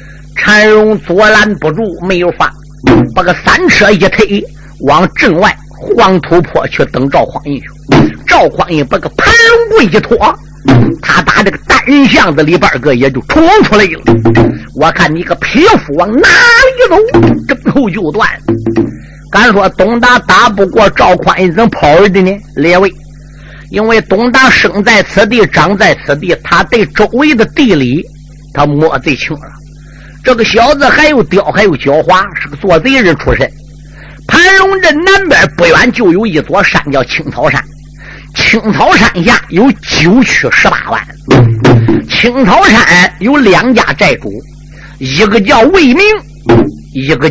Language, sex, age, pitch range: Chinese, male, 50-69, 150-230 Hz